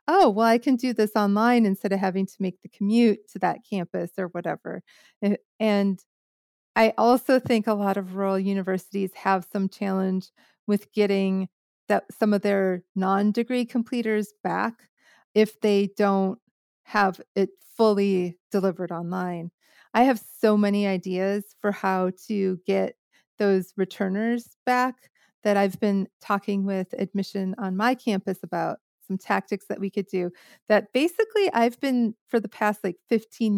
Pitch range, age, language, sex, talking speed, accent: 195-230 Hz, 40-59, English, female, 150 wpm, American